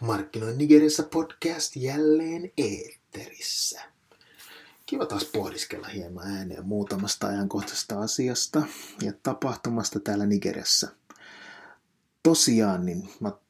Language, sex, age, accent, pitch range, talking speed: Finnish, male, 30-49, native, 100-120 Hz, 90 wpm